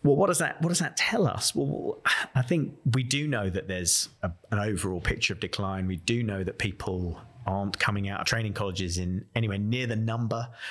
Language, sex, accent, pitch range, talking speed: English, male, British, 95-125 Hz, 220 wpm